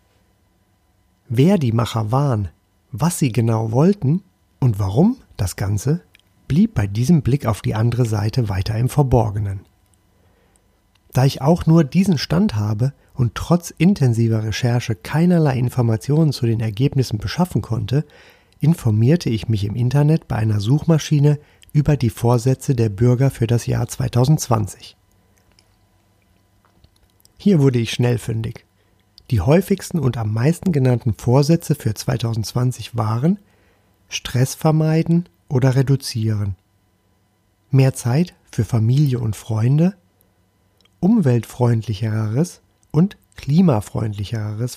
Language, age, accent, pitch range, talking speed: German, 40-59, German, 100-140 Hz, 115 wpm